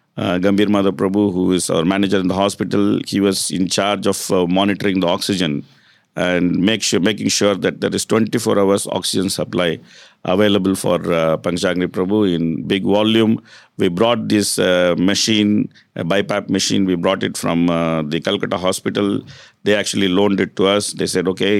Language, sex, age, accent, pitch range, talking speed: English, male, 50-69, Indian, 90-110 Hz, 180 wpm